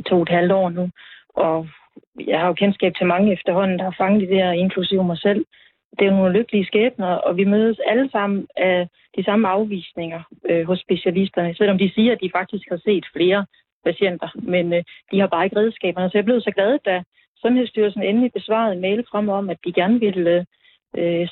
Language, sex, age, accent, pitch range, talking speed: Danish, female, 30-49, native, 180-225 Hz, 210 wpm